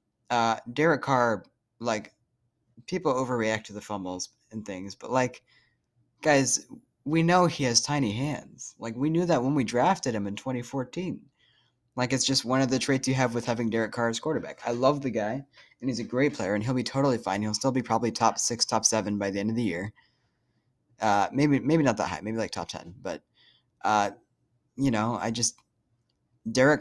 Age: 20-39